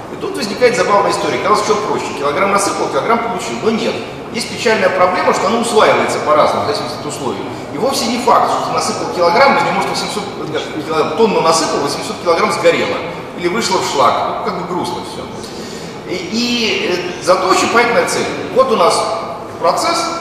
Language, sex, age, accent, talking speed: Russian, male, 30-49, native, 180 wpm